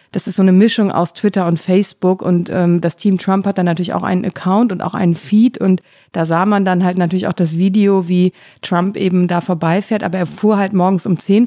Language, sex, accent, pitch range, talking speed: German, female, German, 180-205 Hz, 240 wpm